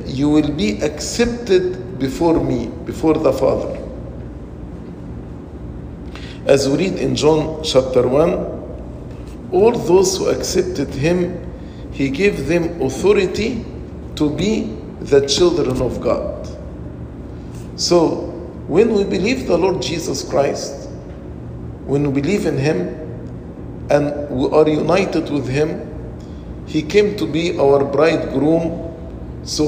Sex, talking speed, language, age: male, 115 wpm, English, 50-69